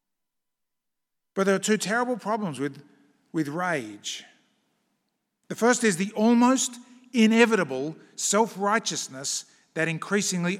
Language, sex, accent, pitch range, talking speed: English, male, Australian, 160-210 Hz, 100 wpm